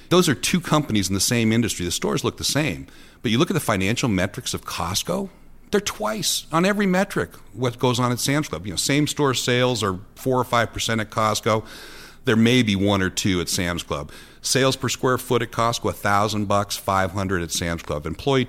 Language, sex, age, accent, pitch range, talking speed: English, male, 60-79, American, 90-120 Hz, 220 wpm